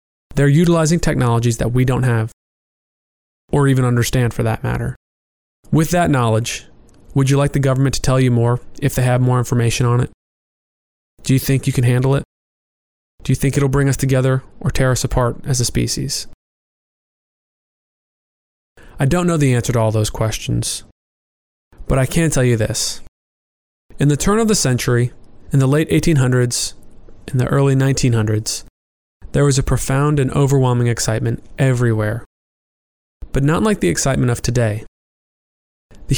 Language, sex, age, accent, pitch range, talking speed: English, male, 20-39, American, 110-135 Hz, 165 wpm